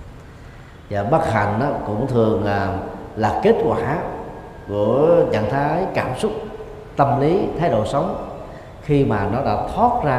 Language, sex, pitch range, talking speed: Vietnamese, male, 100-135 Hz, 145 wpm